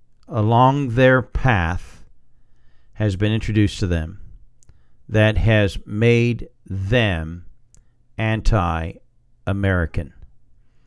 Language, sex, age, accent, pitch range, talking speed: English, male, 50-69, American, 95-125 Hz, 70 wpm